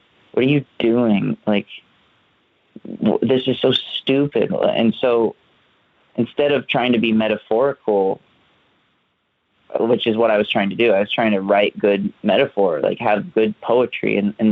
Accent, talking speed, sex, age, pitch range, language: American, 155 wpm, male, 20-39, 105-115 Hz, English